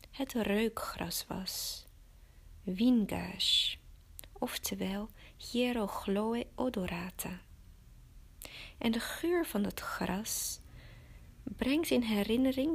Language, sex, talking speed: Dutch, female, 75 wpm